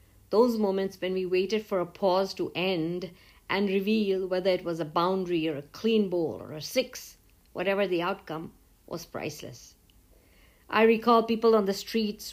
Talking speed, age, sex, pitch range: 170 wpm, 50-69, female, 180-220 Hz